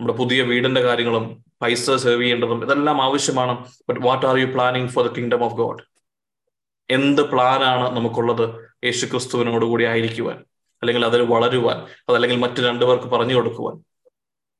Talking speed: 135 wpm